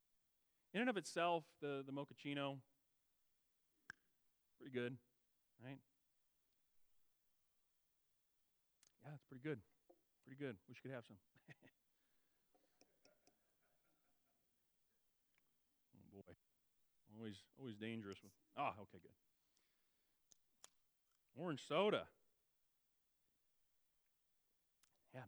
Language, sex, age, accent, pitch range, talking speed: English, male, 40-59, American, 120-170 Hz, 75 wpm